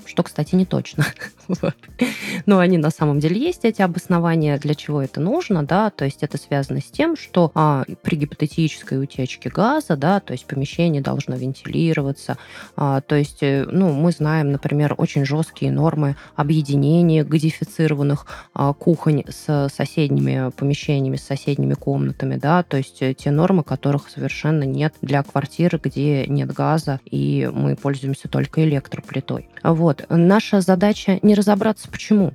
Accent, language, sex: native, Russian, female